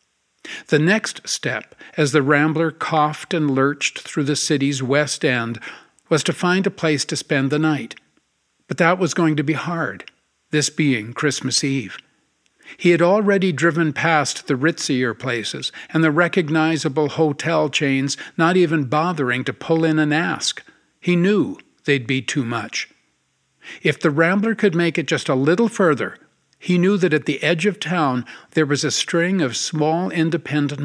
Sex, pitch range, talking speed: male, 140-175 Hz, 165 wpm